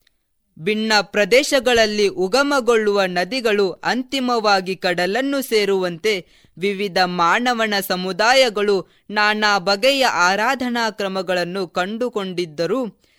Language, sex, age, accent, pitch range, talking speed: Kannada, female, 20-39, native, 185-235 Hz, 70 wpm